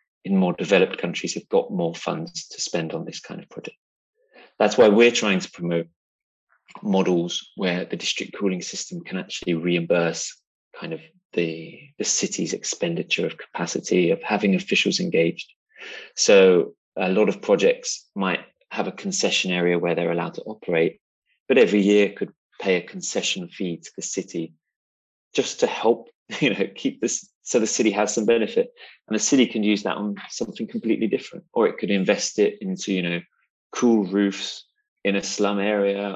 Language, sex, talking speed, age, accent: English, male, 175 wpm, 30-49, British